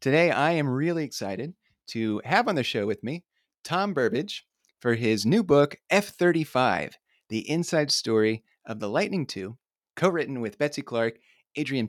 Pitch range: 115-155 Hz